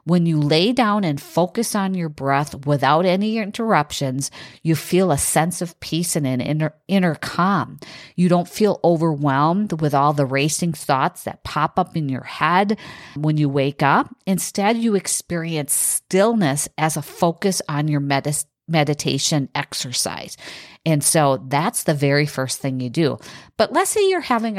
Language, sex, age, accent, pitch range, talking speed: English, female, 40-59, American, 145-180 Hz, 165 wpm